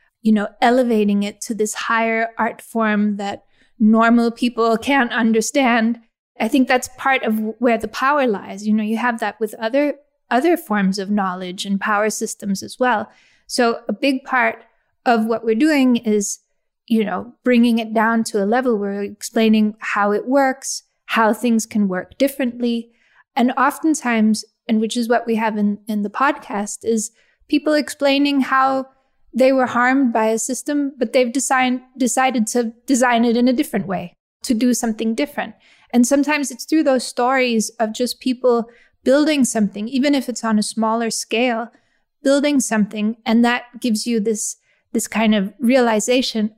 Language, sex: English, female